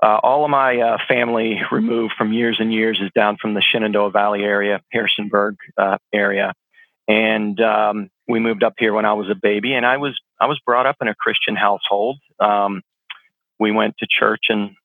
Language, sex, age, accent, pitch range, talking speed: English, male, 40-59, American, 105-115 Hz, 200 wpm